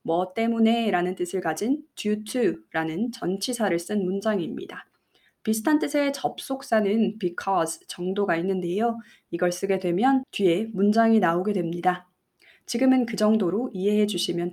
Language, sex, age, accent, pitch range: Korean, female, 20-39, native, 180-230 Hz